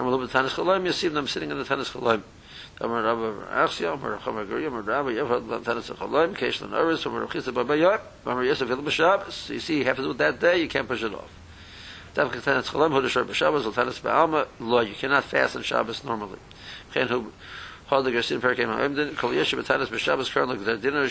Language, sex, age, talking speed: English, male, 50-69, 85 wpm